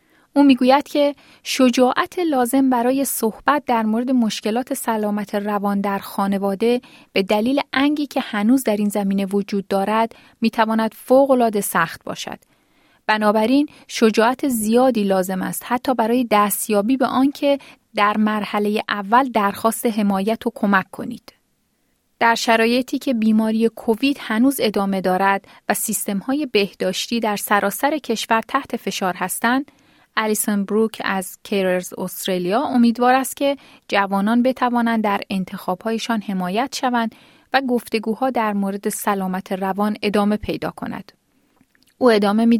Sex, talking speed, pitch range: female, 125 wpm, 205-255 Hz